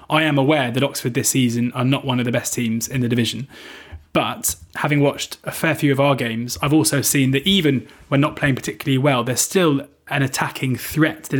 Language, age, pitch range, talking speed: English, 20-39, 125-145 Hz, 215 wpm